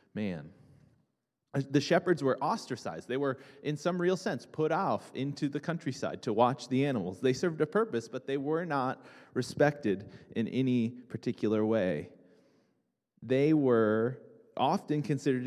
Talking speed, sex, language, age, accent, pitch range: 145 wpm, male, English, 30-49, American, 115-150 Hz